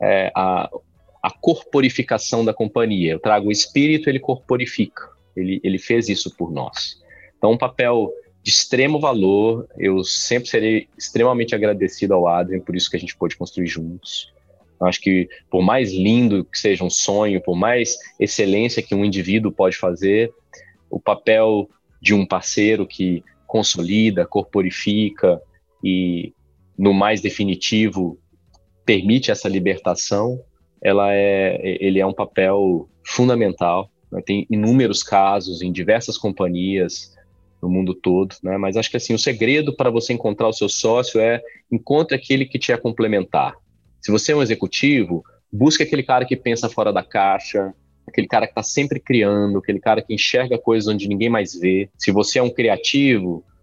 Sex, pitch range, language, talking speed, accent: male, 95-115 Hz, Portuguese, 160 wpm, Brazilian